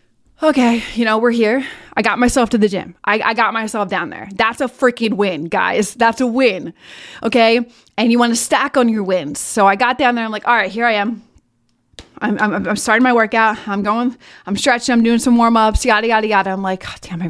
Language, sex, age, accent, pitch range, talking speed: English, female, 20-39, American, 200-235 Hz, 235 wpm